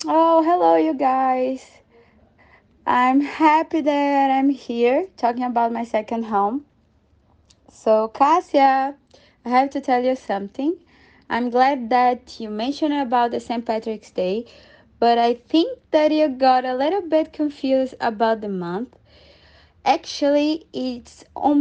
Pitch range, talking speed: 210-270 Hz, 135 wpm